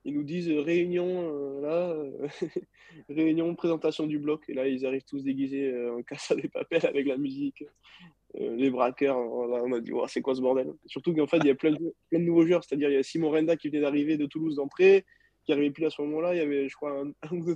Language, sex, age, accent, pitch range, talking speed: French, male, 20-39, French, 140-170 Hz, 255 wpm